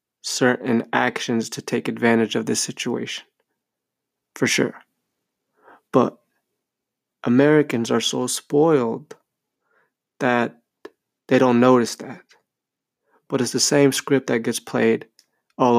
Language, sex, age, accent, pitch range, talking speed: English, male, 20-39, American, 115-140 Hz, 110 wpm